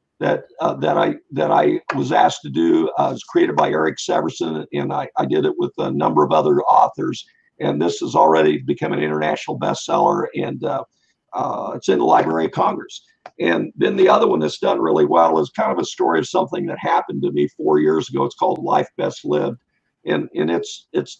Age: 50-69